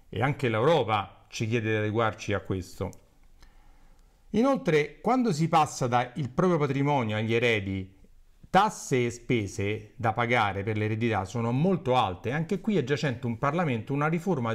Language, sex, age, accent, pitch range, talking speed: Italian, male, 40-59, native, 110-150 Hz, 150 wpm